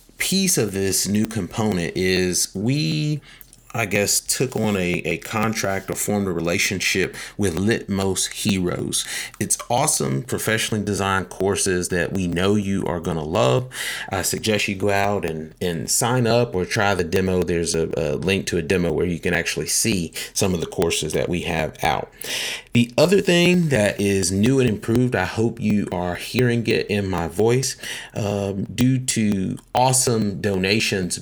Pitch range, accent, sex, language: 90-115 Hz, American, male, English